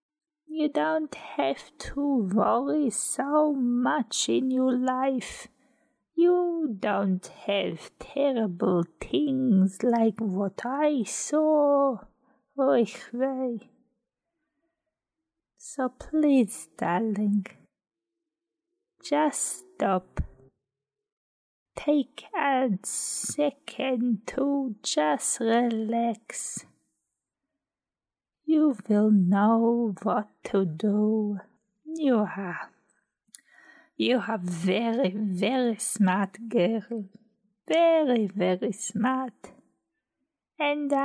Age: 30-49